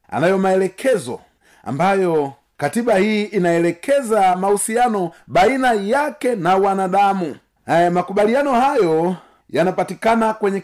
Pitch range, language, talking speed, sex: 135-220 Hz, Swahili, 85 wpm, male